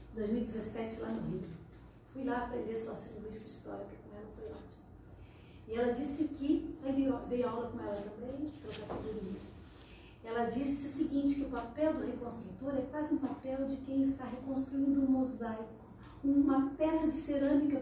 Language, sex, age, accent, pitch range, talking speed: Portuguese, female, 40-59, Brazilian, 235-310 Hz, 165 wpm